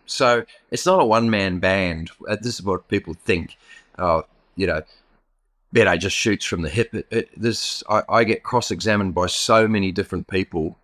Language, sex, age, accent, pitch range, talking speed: English, male, 30-49, Australian, 95-120 Hz, 190 wpm